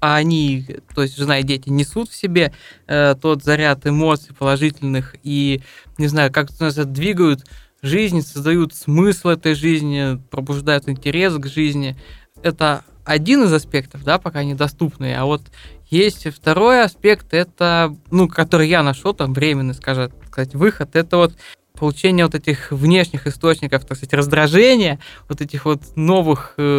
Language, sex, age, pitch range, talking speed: Russian, male, 20-39, 140-170 Hz, 150 wpm